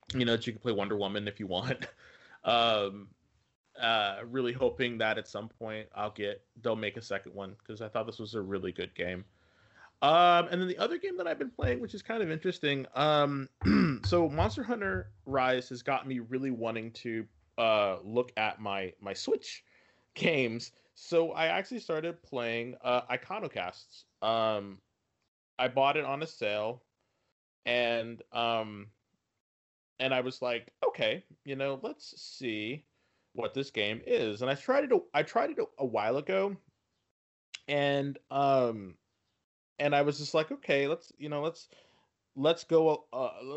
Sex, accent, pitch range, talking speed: male, American, 110-155 Hz, 170 wpm